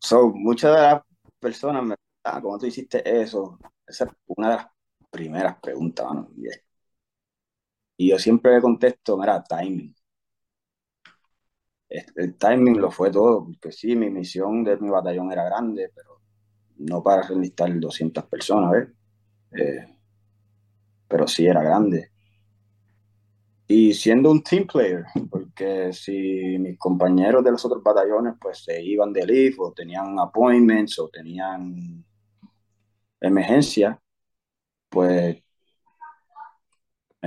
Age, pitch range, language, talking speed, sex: 20-39, 95-120 Hz, English, 125 wpm, male